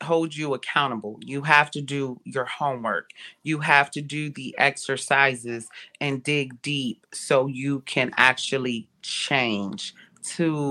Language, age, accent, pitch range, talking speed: English, 30-49, American, 135-170 Hz, 135 wpm